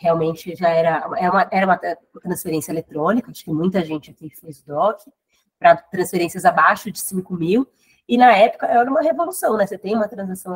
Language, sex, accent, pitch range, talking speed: Portuguese, female, Brazilian, 180-240 Hz, 190 wpm